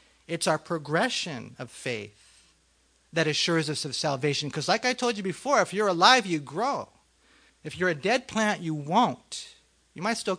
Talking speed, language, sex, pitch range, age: 180 wpm, English, male, 135-180 Hz, 40-59